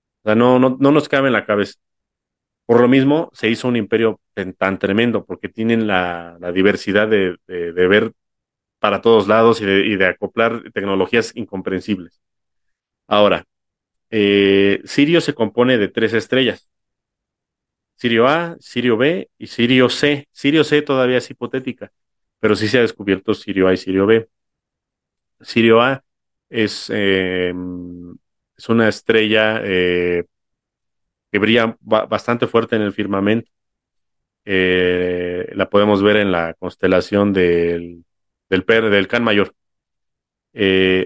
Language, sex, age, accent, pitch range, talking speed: Spanish, male, 30-49, Mexican, 95-115 Hz, 135 wpm